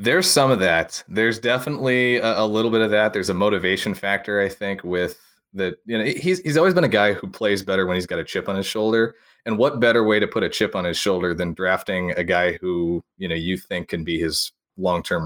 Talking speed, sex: 250 wpm, male